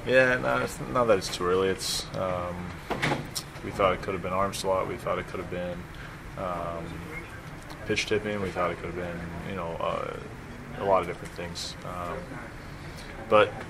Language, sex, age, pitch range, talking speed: English, male, 20-39, 85-95 Hz, 190 wpm